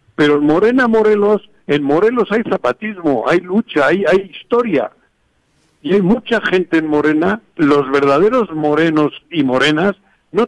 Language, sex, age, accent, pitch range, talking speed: Spanish, male, 60-79, Mexican, 155-220 Hz, 135 wpm